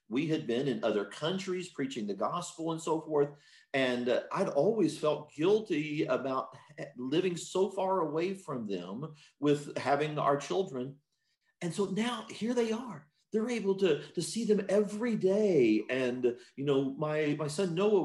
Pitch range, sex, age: 125-190 Hz, male, 40-59